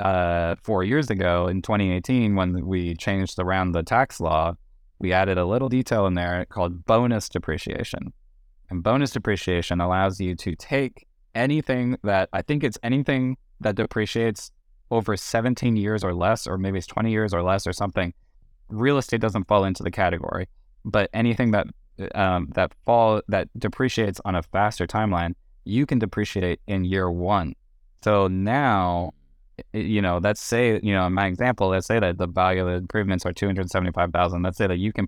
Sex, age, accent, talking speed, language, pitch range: male, 20-39, American, 175 wpm, English, 90-110 Hz